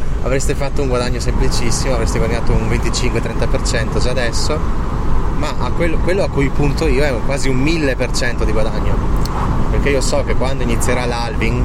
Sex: male